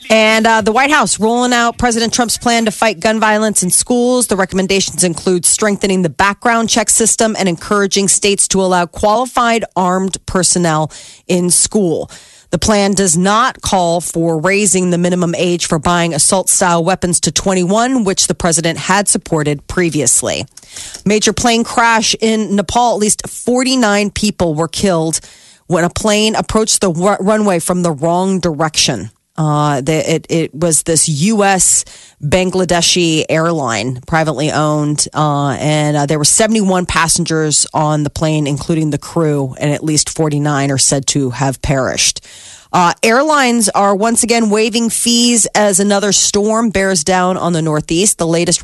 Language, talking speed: English, 160 wpm